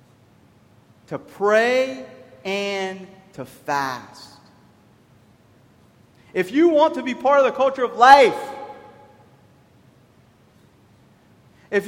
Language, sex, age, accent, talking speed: English, male, 30-49, American, 85 wpm